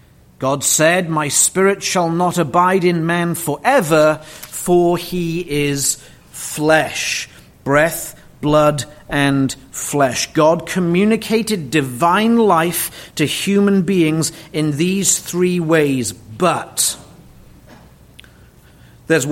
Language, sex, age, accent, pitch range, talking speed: English, male, 40-59, British, 145-180 Hz, 95 wpm